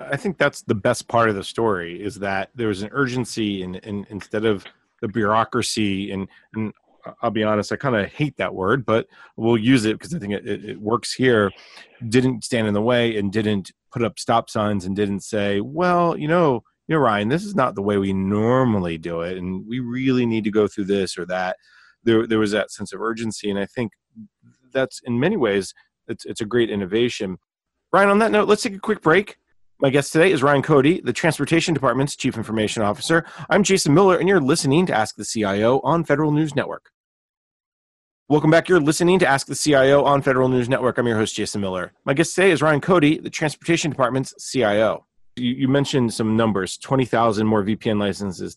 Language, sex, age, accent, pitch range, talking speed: English, male, 30-49, American, 105-140 Hz, 215 wpm